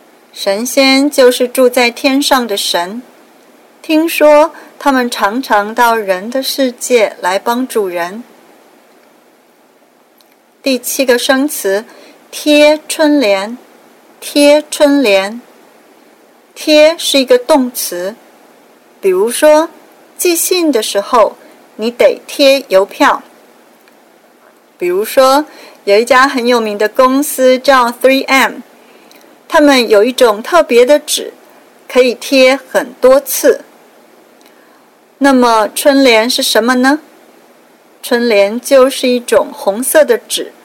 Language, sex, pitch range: Chinese, female, 235-295 Hz